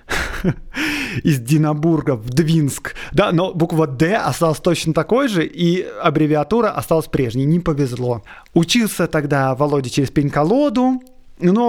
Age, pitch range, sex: 20-39, 140-190 Hz, male